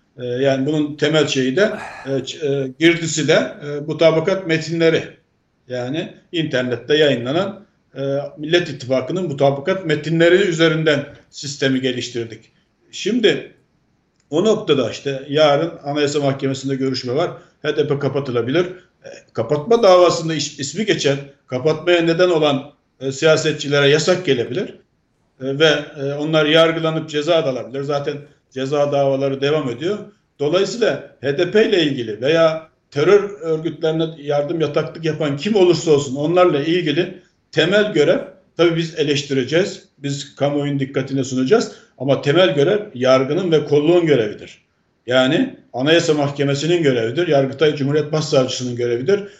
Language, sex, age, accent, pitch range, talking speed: Turkish, male, 50-69, native, 140-165 Hz, 120 wpm